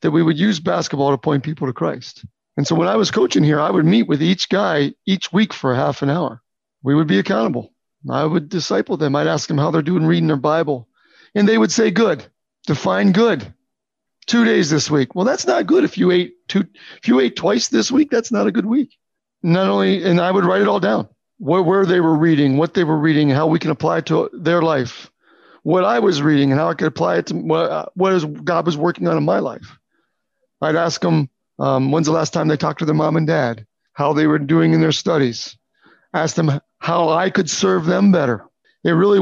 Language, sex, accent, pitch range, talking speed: English, male, American, 155-190 Hz, 235 wpm